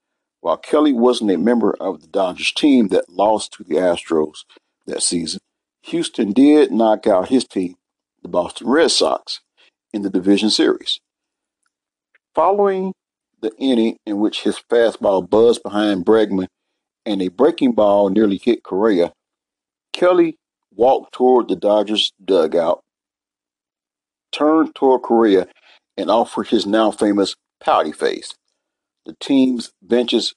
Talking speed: 130 wpm